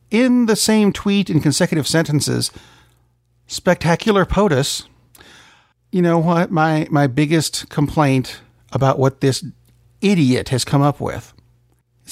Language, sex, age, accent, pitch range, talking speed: English, male, 50-69, American, 125-185 Hz, 125 wpm